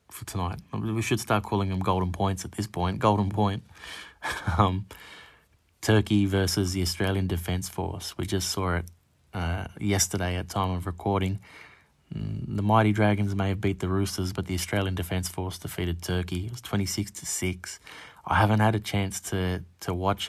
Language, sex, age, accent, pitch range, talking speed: English, male, 20-39, Australian, 95-105 Hz, 175 wpm